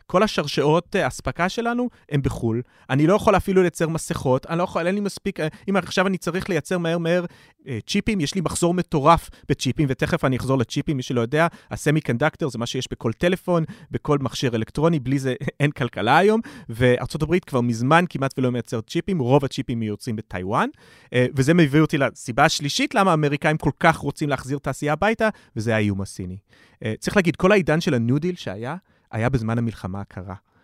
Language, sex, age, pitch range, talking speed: Hebrew, male, 30-49, 125-170 Hz, 145 wpm